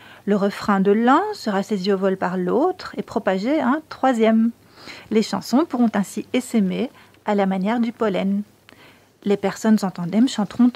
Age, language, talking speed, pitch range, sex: 40-59, French, 160 wpm, 200-245 Hz, female